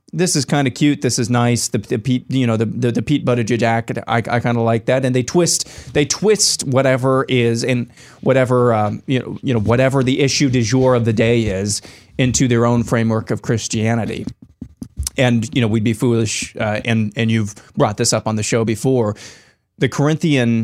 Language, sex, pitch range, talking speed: English, male, 115-130 Hz, 210 wpm